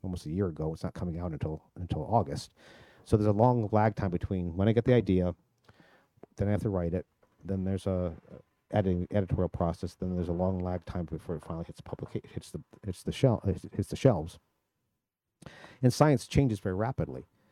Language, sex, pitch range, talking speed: English, male, 90-110 Hz, 200 wpm